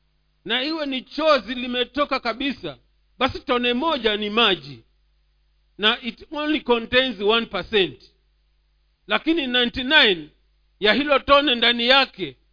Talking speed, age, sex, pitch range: 110 wpm, 50-69, male, 165-250 Hz